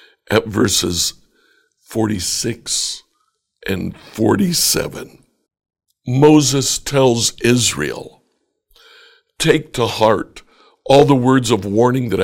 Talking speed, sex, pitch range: 85 wpm, male, 110-135 Hz